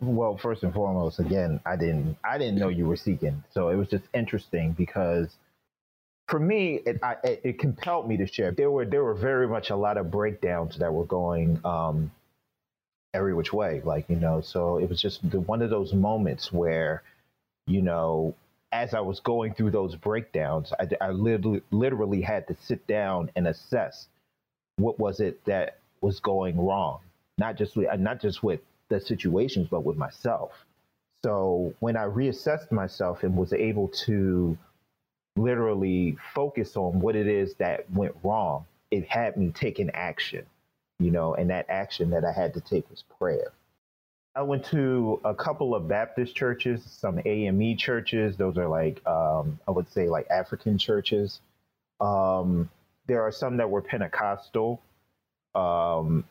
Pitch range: 85-115 Hz